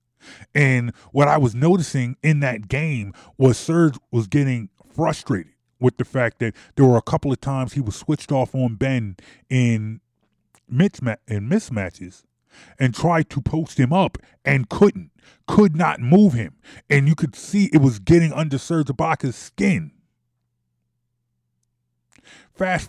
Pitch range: 120-180 Hz